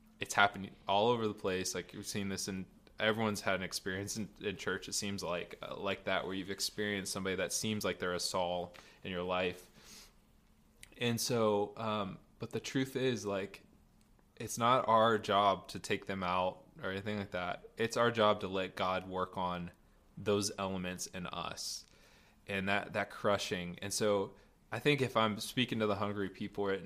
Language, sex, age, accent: English, male, 20-39, American